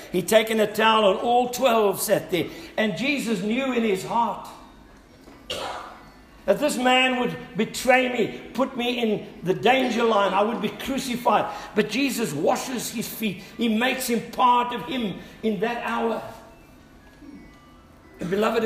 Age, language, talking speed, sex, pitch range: 60-79, English, 150 wpm, male, 200-255 Hz